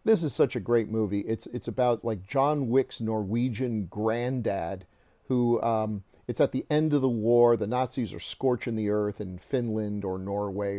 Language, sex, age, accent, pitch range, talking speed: English, male, 40-59, American, 105-135 Hz, 185 wpm